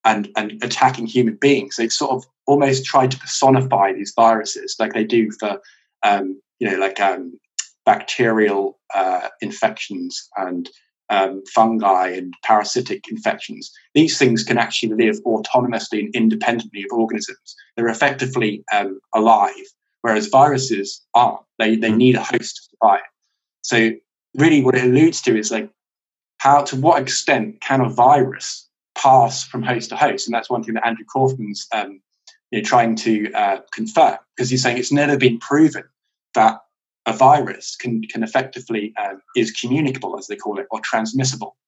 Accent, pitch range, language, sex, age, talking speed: British, 110-140 Hz, English, male, 20-39, 160 wpm